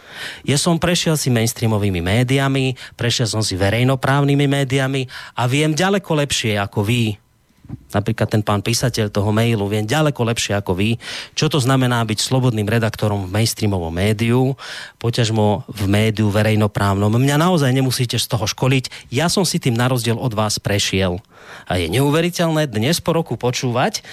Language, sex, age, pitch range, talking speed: Slovak, male, 30-49, 120-160 Hz, 155 wpm